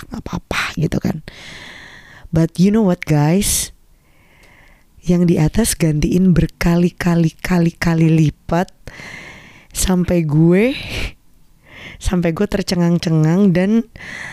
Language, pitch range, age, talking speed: Indonesian, 160-185 Hz, 20-39, 85 wpm